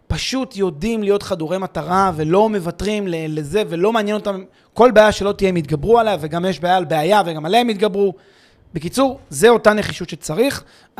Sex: male